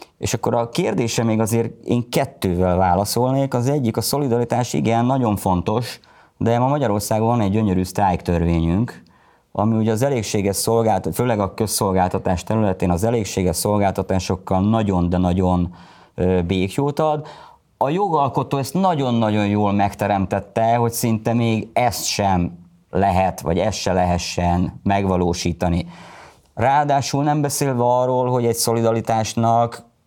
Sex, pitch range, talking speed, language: male, 95-120 Hz, 130 wpm, Hungarian